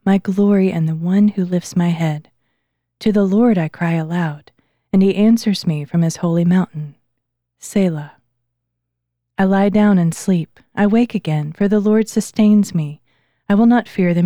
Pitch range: 150-200 Hz